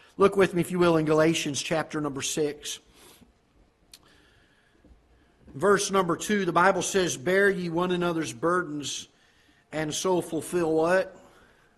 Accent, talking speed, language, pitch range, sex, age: American, 130 wpm, English, 145-175 Hz, male, 50-69